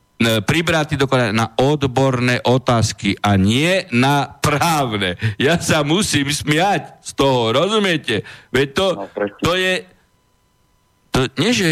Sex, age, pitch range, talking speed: male, 60-79, 115-180 Hz, 110 wpm